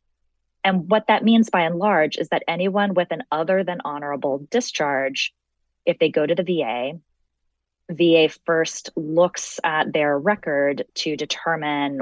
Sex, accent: female, American